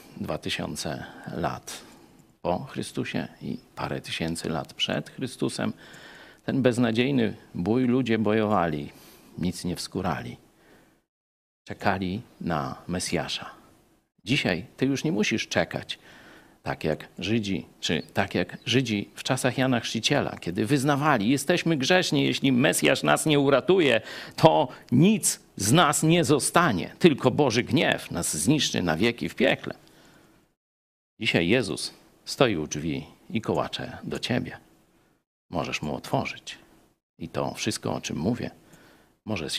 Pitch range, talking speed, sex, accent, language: 95-145 Hz, 125 wpm, male, native, Polish